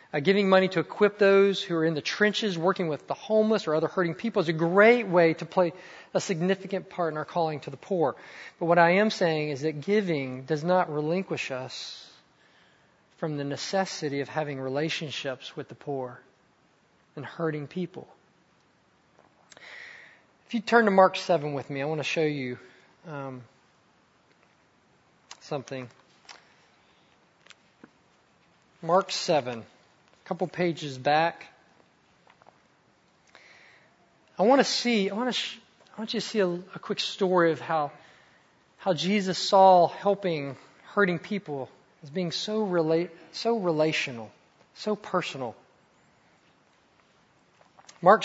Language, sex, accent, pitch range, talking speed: English, male, American, 155-200 Hz, 140 wpm